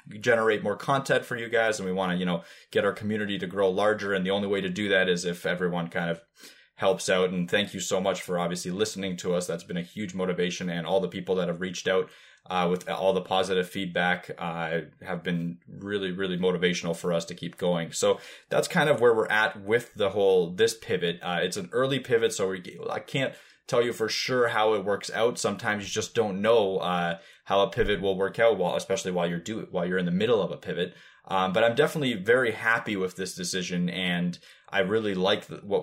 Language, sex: English, male